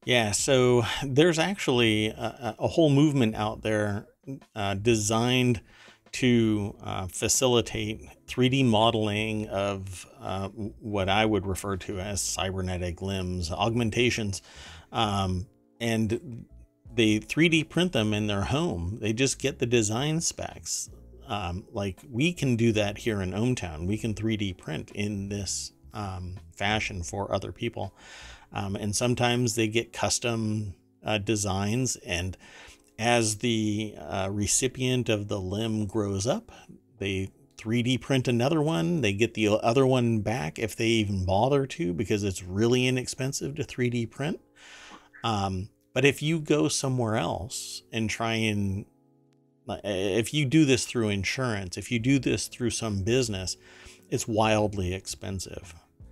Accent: American